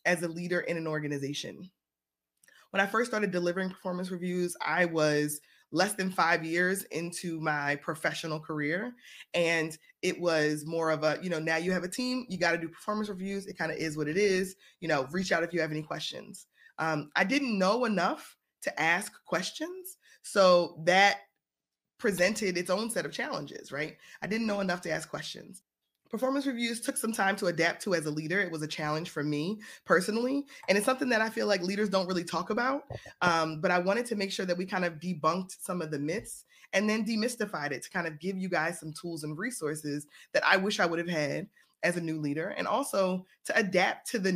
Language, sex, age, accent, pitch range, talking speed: English, female, 20-39, American, 160-200 Hz, 215 wpm